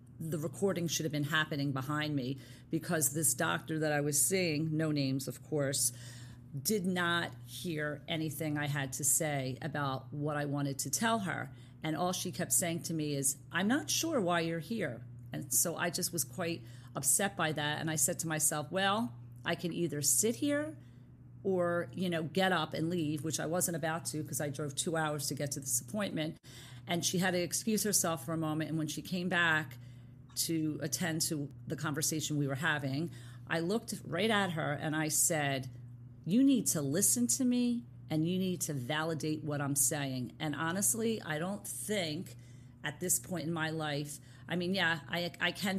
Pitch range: 140-175 Hz